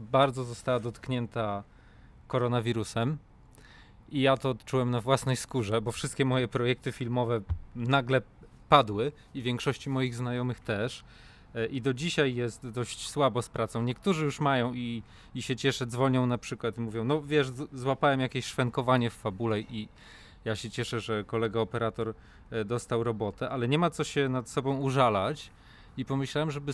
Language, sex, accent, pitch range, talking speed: Polish, male, native, 115-135 Hz, 155 wpm